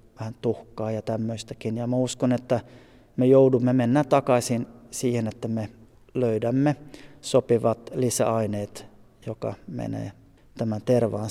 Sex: male